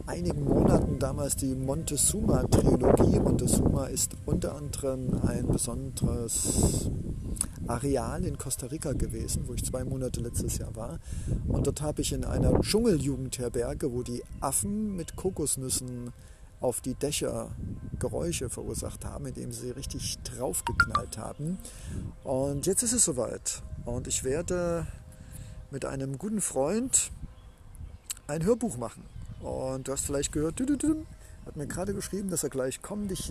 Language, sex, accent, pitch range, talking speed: German, male, German, 120-150 Hz, 135 wpm